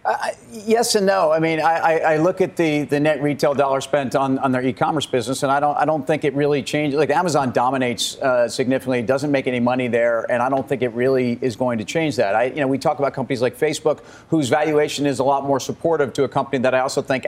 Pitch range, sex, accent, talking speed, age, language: 135-155 Hz, male, American, 260 wpm, 50-69, English